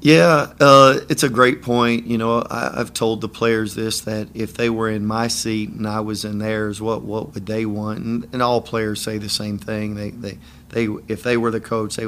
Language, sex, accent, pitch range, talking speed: English, male, American, 110-120 Hz, 240 wpm